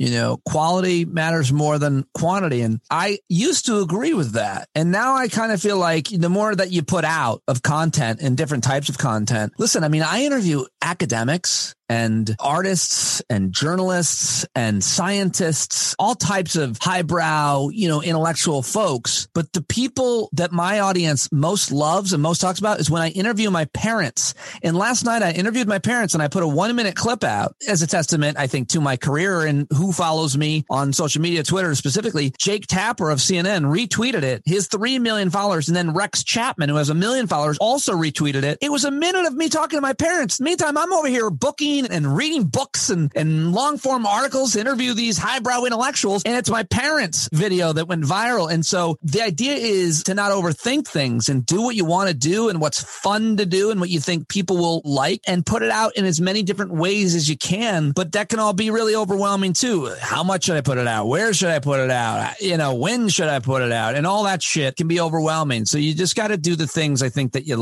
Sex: male